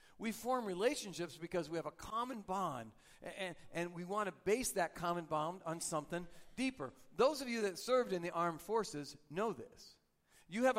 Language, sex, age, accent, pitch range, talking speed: English, male, 50-69, American, 165-215 Hz, 190 wpm